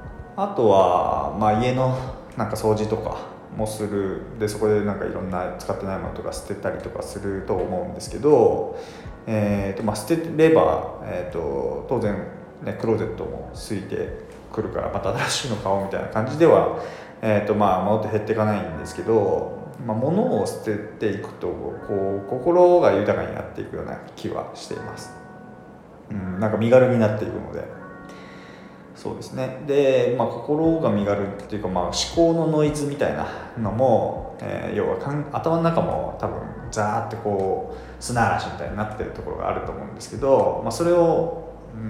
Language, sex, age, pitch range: Japanese, male, 20-39, 100-155 Hz